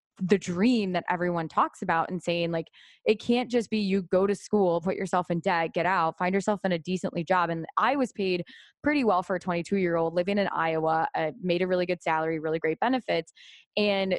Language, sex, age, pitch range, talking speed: English, female, 20-39, 165-200 Hz, 220 wpm